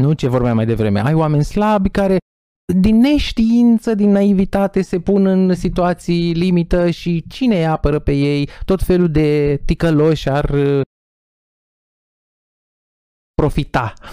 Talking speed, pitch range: 125 wpm, 120-170 Hz